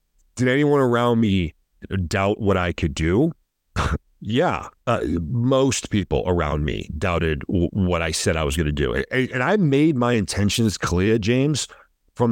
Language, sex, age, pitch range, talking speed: English, male, 40-59, 90-115 Hz, 155 wpm